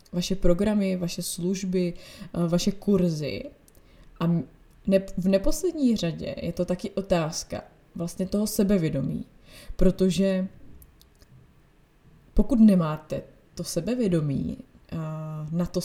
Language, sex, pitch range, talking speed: Czech, female, 165-190 Hz, 90 wpm